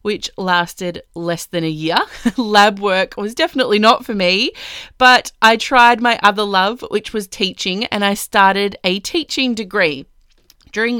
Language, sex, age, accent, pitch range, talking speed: English, female, 20-39, Australian, 190-240 Hz, 160 wpm